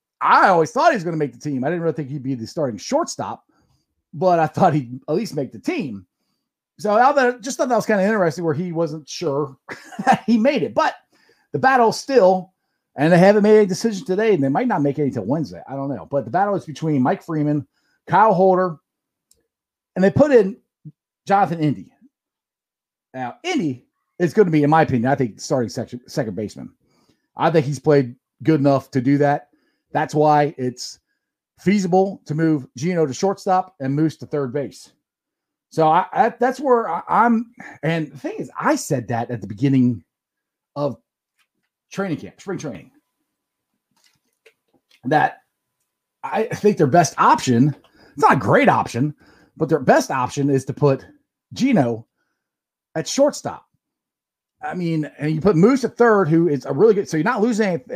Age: 40-59